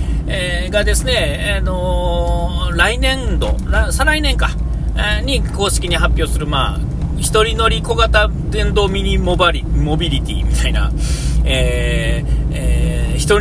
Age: 40-59